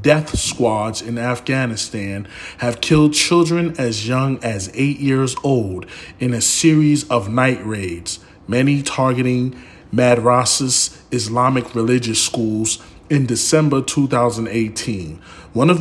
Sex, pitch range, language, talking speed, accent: male, 115-150 Hz, English, 115 wpm, American